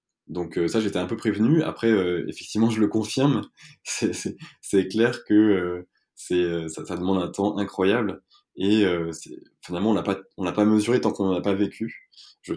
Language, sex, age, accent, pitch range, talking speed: French, male, 20-39, French, 90-110 Hz, 200 wpm